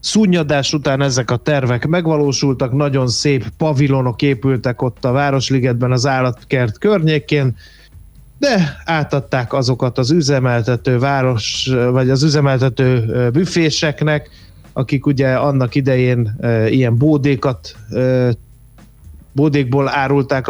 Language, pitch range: Hungarian, 125-145 Hz